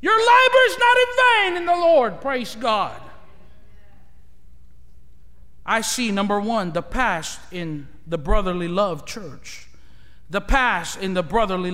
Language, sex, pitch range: English, male, 220-330 Hz